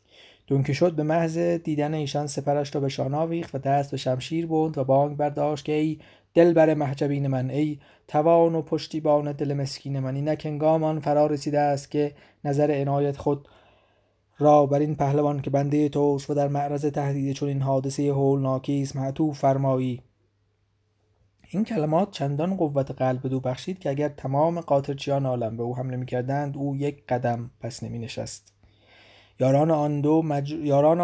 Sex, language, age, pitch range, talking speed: male, Persian, 20-39, 125-155 Hz, 155 wpm